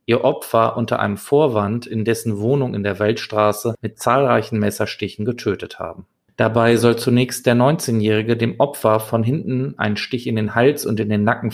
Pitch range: 110-135 Hz